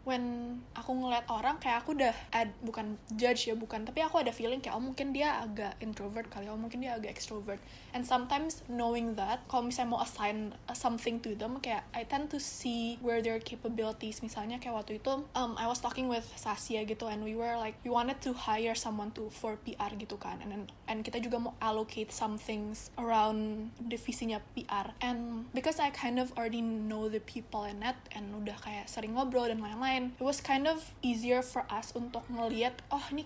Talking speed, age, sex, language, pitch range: 205 wpm, 20-39, female, Indonesian, 220-250 Hz